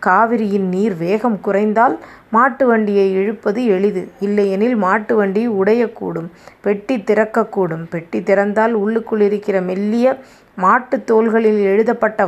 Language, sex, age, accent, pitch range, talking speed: Tamil, female, 30-49, native, 195-230 Hz, 105 wpm